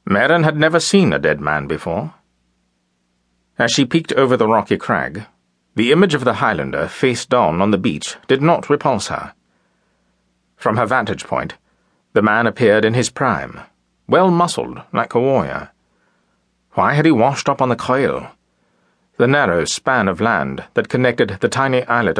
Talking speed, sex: 165 wpm, male